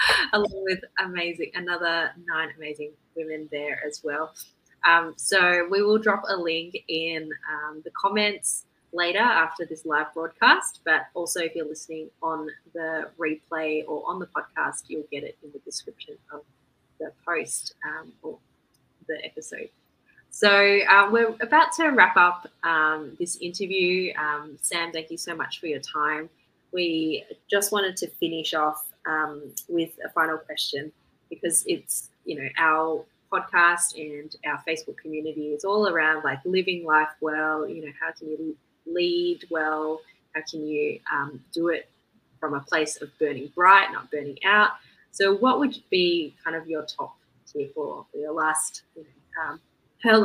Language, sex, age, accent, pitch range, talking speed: English, female, 20-39, Australian, 155-195 Hz, 160 wpm